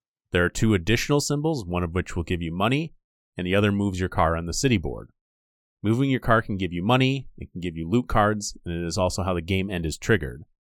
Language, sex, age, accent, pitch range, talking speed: English, male, 30-49, American, 85-100 Hz, 250 wpm